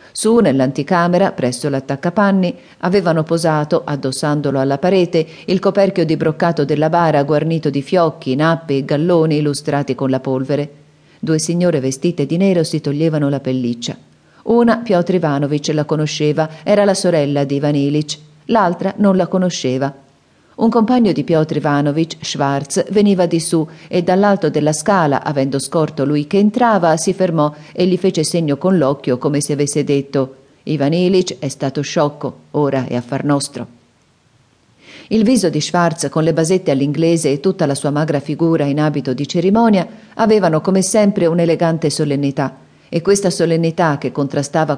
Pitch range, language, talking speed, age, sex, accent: 145-175 Hz, Italian, 155 wpm, 40-59, female, native